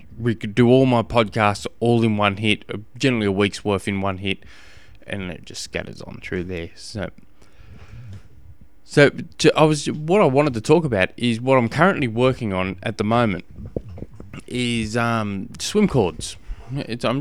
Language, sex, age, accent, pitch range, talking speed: English, male, 20-39, Australian, 95-125 Hz, 170 wpm